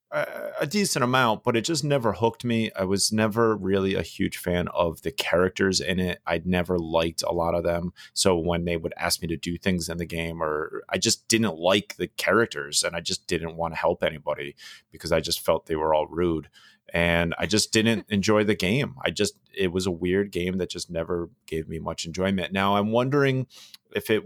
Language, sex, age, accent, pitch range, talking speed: English, male, 30-49, American, 85-110 Hz, 220 wpm